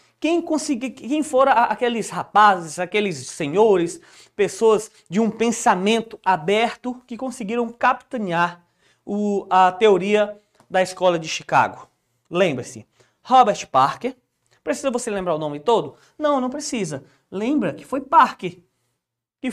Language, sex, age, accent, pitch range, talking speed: Portuguese, male, 20-39, Brazilian, 180-255 Hz, 115 wpm